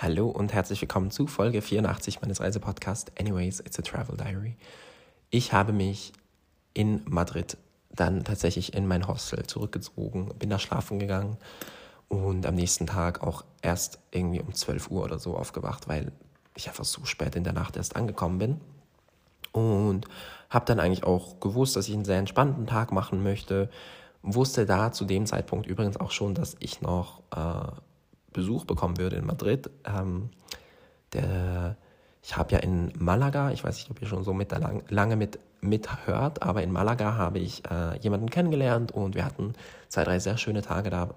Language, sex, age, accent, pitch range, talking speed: German, male, 20-39, German, 90-110 Hz, 170 wpm